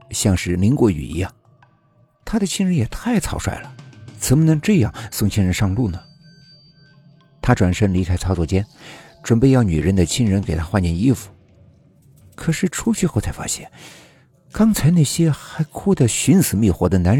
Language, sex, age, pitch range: Chinese, male, 50-69, 90-125 Hz